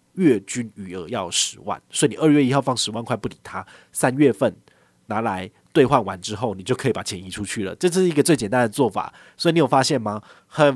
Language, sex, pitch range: Chinese, male, 105-145 Hz